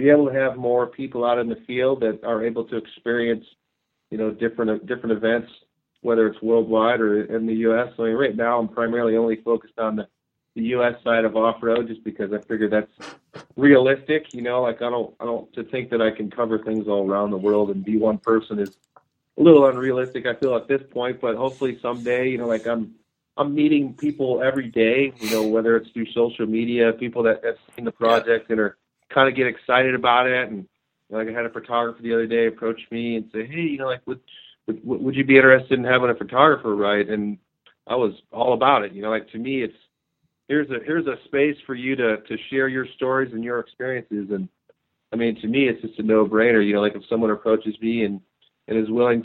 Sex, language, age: male, English, 40-59